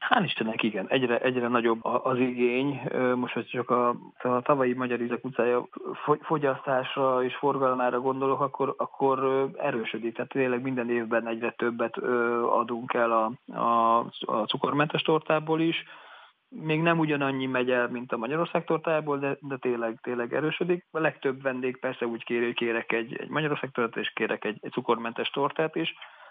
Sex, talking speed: male, 160 wpm